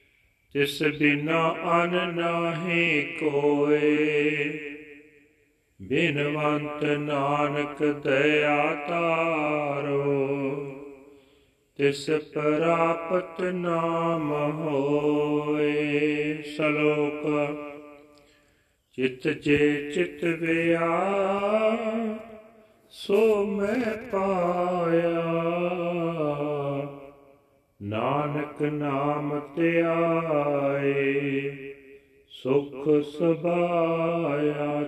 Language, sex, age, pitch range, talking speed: Punjabi, male, 40-59, 145-165 Hz, 45 wpm